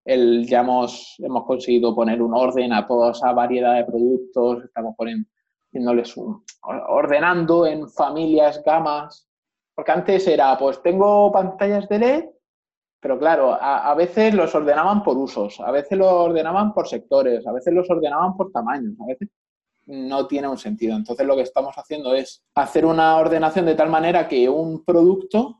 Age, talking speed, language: 20-39, 160 wpm, Spanish